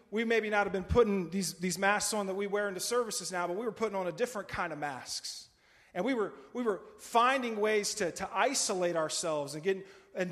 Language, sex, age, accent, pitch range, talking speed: English, male, 30-49, American, 170-230 Hz, 235 wpm